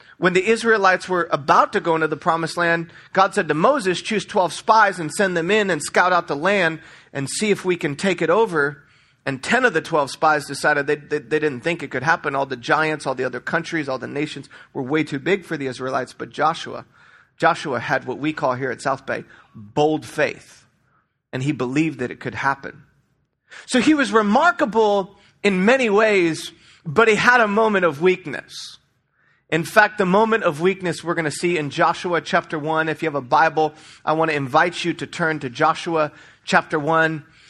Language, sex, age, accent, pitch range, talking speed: English, male, 40-59, American, 155-205 Hz, 210 wpm